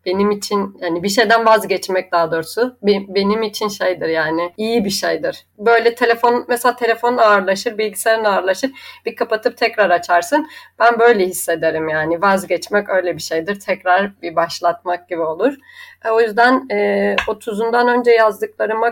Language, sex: Turkish, female